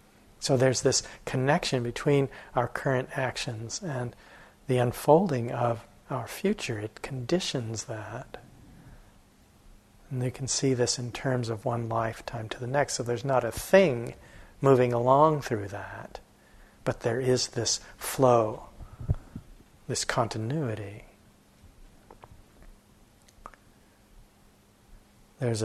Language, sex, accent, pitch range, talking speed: English, male, American, 110-135 Hz, 110 wpm